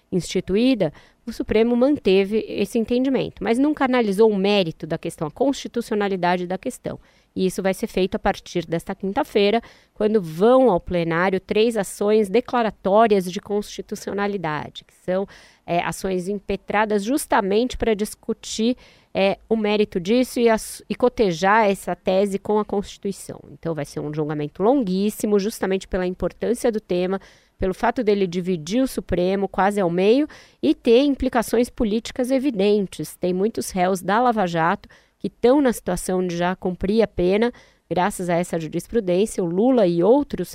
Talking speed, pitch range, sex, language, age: 150 wpm, 185-230 Hz, female, Portuguese, 20-39